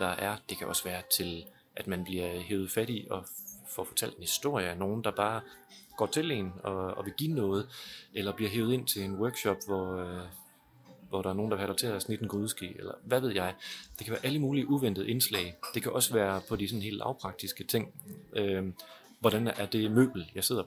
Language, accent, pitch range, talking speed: Danish, native, 95-115 Hz, 230 wpm